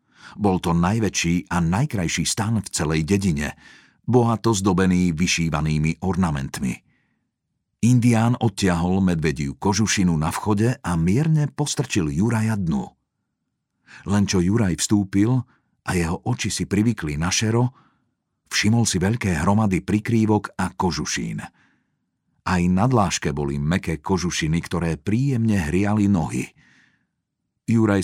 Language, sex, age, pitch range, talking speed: Slovak, male, 50-69, 90-115 Hz, 115 wpm